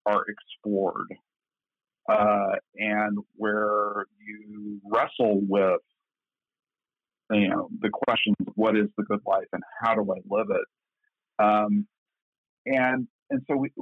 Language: English